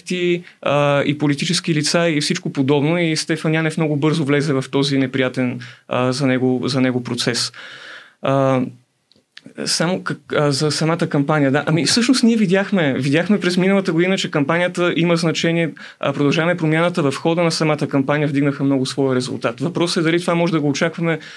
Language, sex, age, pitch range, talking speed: Bulgarian, male, 30-49, 140-170 Hz, 165 wpm